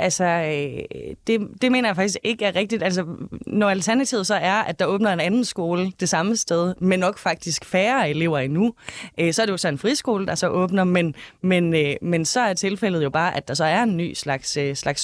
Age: 20-39